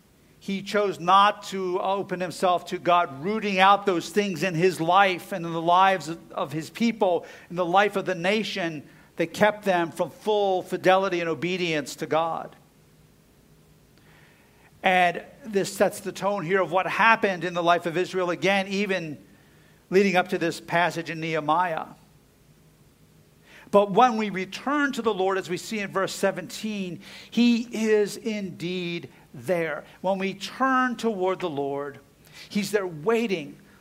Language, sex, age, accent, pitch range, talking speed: English, male, 50-69, American, 170-205 Hz, 155 wpm